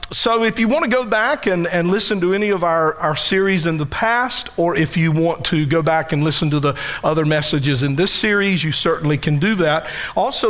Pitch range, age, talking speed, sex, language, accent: 155-195 Hz, 50-69, 235 wpm, male, English, American